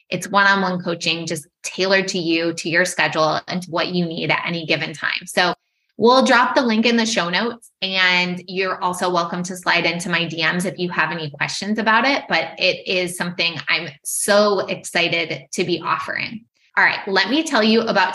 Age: 20-39